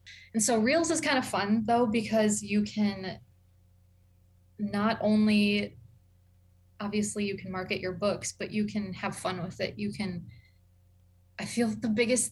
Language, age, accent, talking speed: English, 20-39, American, 155 wpm